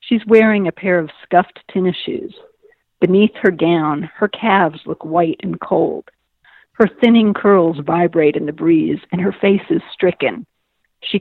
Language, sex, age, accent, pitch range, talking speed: English, female, 50-69, American, 170-235 Hz, 160 wpm